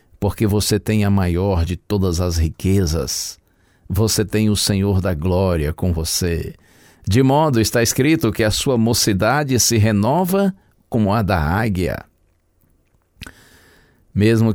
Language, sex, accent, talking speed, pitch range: Portuguese, male, Brazilian, 130 wpm, 95-130 Hz